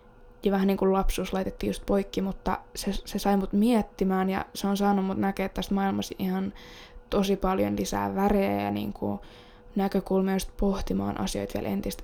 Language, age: Finnish, 10-29